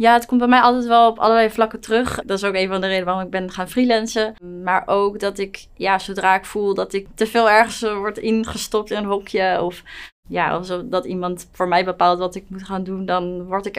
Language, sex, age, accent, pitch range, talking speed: Dutch, female, 20-39, Dutch, 180-200 Hz, 245 wpm